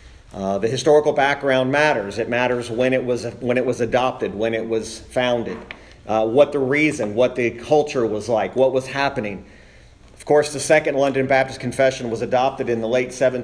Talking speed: 190 wpm